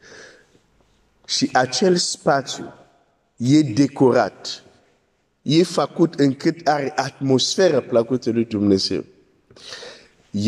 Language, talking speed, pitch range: Romanian, 90 wpm, 110-145 Hz